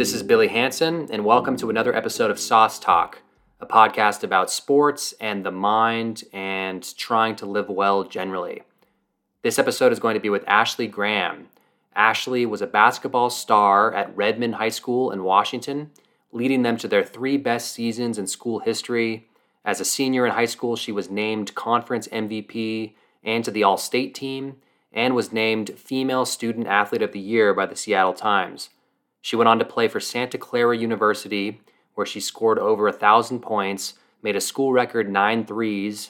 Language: English